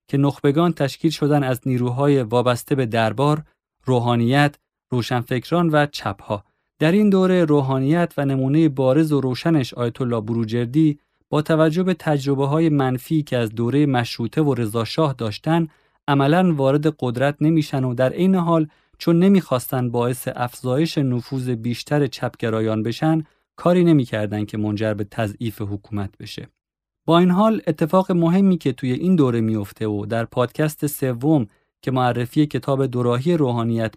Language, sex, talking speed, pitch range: Persian, male, 140 wpm, 120-155 Hz